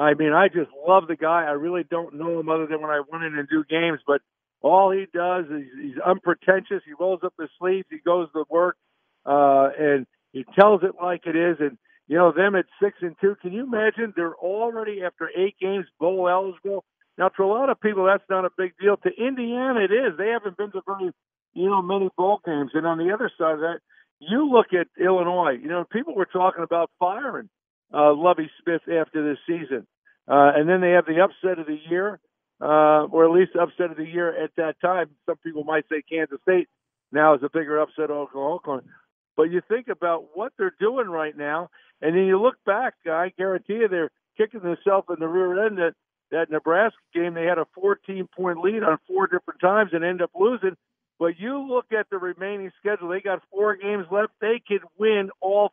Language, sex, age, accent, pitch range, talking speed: English, male, 50-69, American, 160-195 Hz, 220 wpm